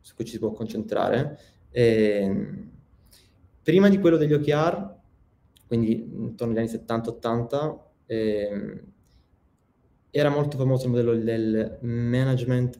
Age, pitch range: 20-39, 110-125 Hz